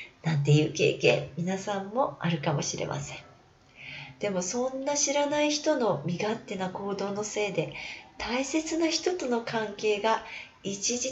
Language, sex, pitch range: Japanese, female, 150-230 Hz